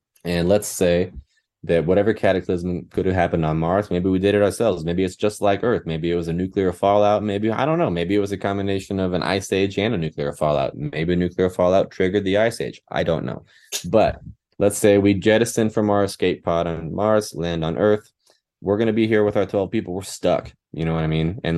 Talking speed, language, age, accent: 235 wpm, English, 20-39, American